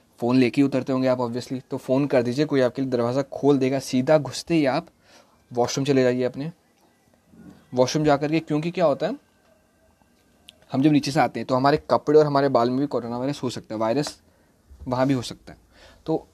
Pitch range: 120-145 Hz